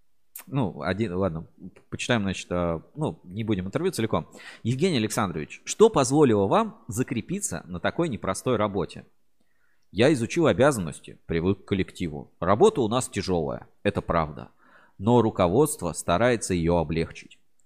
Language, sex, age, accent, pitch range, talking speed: Russian, male, 30-49, native, 90-130 Hz, 125 wpm